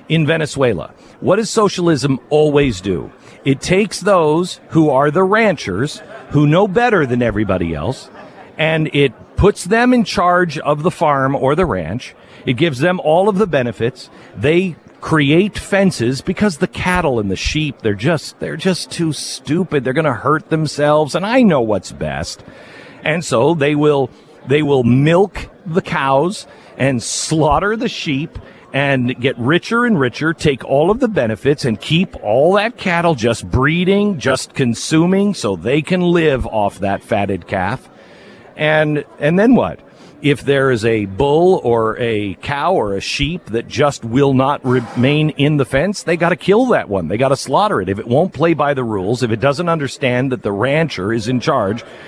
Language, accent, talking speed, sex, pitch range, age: English, American, 180 wpm, male, 130-180 Hz, 50-69